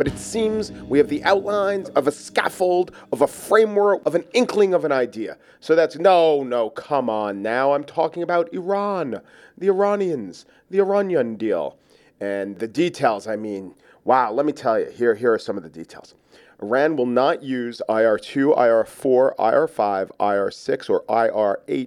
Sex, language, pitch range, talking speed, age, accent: male, English, 130-195 Hz, 170 wpm, 40-59, American